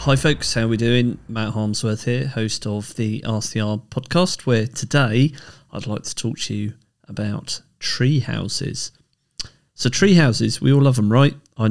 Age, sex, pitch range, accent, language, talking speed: 30-49, male, 105-130 Hz, British, English, 175 wpm